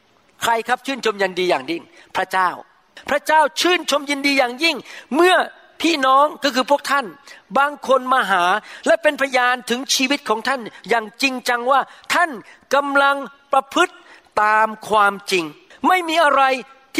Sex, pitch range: male, 200-285 Hz